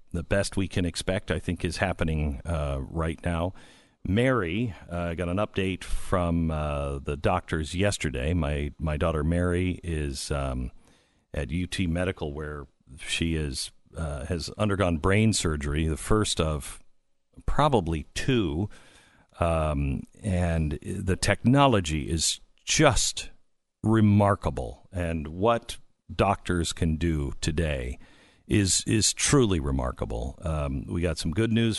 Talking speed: 130 wpm